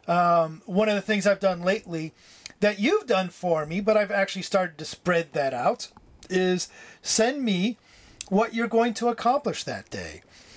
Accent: American